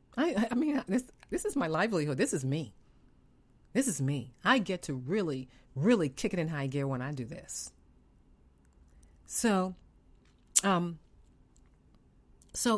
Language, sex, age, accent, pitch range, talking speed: English, female, 40-59, American, 130-180 Hz, 145 wpm